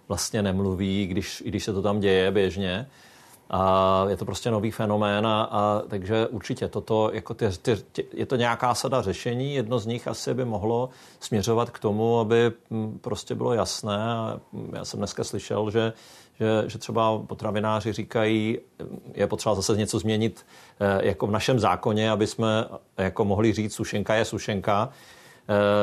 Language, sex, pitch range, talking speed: Czech, male, 100-115 Hz, 140 wpm